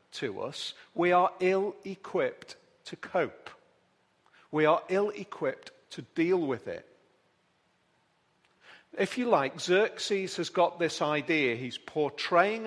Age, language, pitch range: 40-59, English, 165-210 Hz